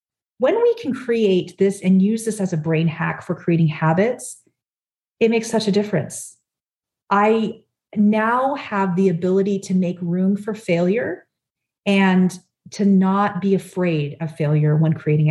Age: 40-59